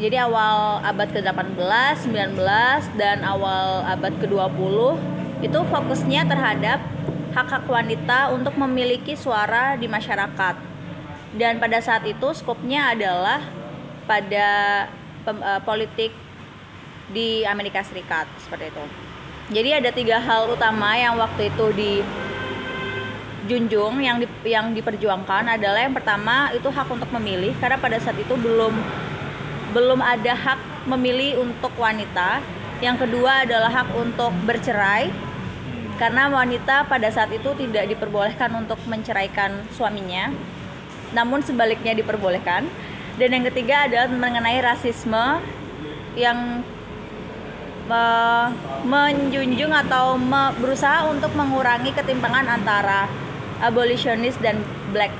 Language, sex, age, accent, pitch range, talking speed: Indonesian, female, 20-39, native, 205-250 Hz, 110 wpm